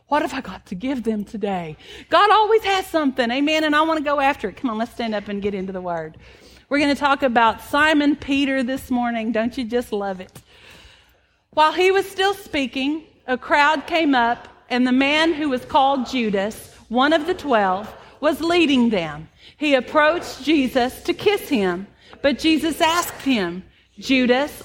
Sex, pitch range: female, 230-310 Hz